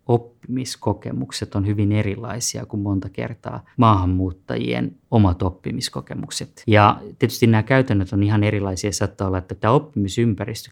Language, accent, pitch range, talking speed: Finnish, native, 95-110 Hz, 125 wpm